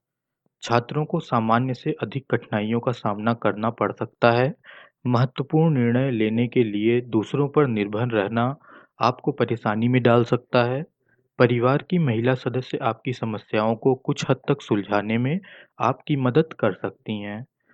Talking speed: 150 wpm